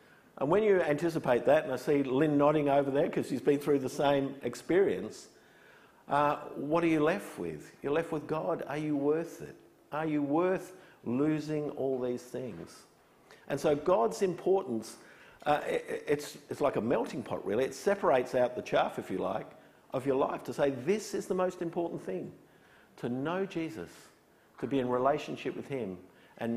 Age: 50-69